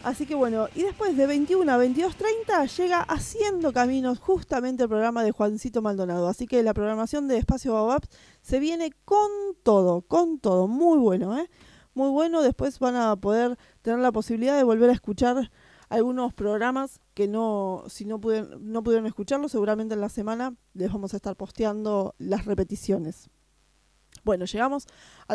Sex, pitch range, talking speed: female, 215-280 Hz, 170 wpm